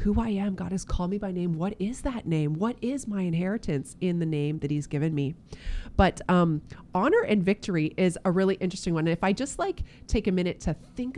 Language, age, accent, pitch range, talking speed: English, 30-49, American, 165-220 Hz, 235 wpm